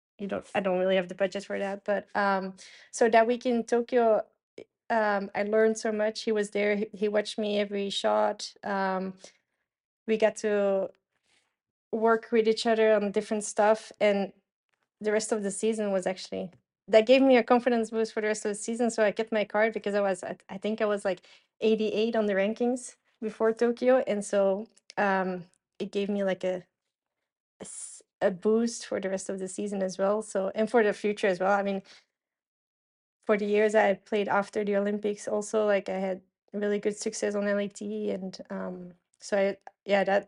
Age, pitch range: 20-39, 195-220 Hz